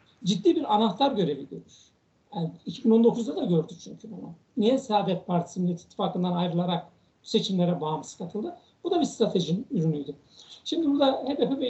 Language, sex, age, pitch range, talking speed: Turkish, male, 60-79, 180-245 Hz, 150 wpm